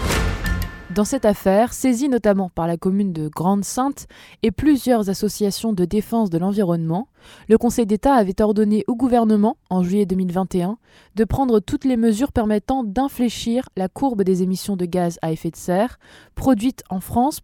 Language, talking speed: French, 160 wpm